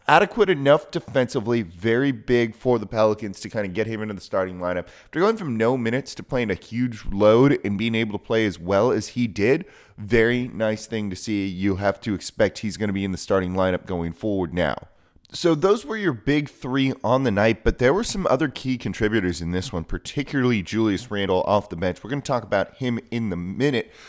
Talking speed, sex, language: 220 wpm, male, English